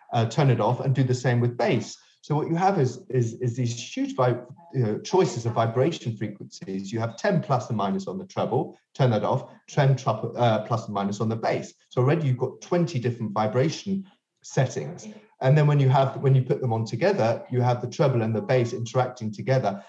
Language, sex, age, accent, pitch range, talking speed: English, male, 30-49, British, 115-135 Hz, 225 wpm